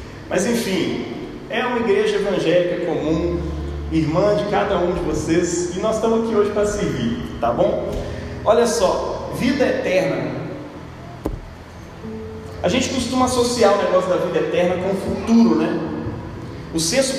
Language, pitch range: Portuguese, 155-225 Hz